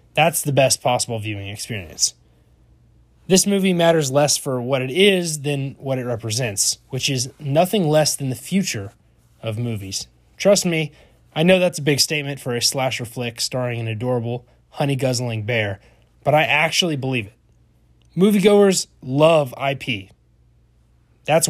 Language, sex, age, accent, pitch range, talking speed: English, male, 20-39, American, 115-155 Hz, 150 wpm